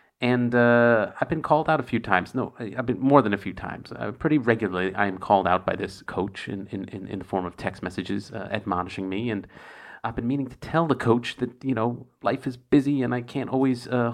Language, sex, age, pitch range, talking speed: English, male, 40-59, 100-125 Hz, 250 wpm